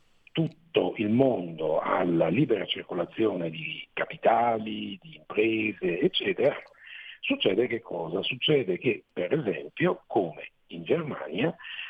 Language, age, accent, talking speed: Italian, 50-69, native, 105 wpm